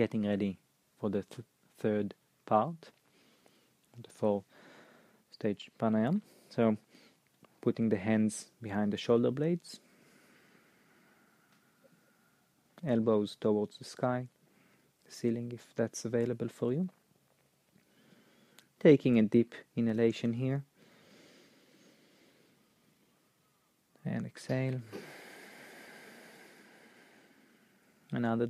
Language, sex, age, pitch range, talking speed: English, male, 20-39, 110-135 Hz, 75 wpm